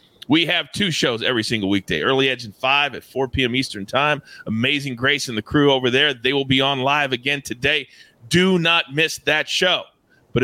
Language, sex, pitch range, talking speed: English, male, 120-160 Hz, 205 wpm